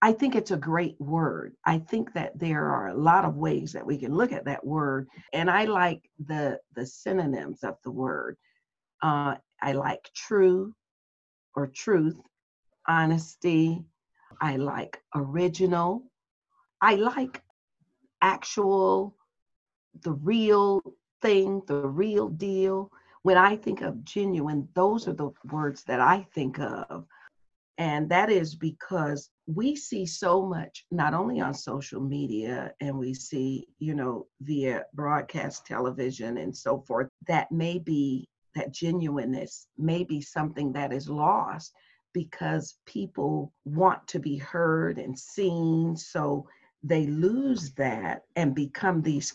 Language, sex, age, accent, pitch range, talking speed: English, female, 50-69, American, 145-190 Hz, 135 wpm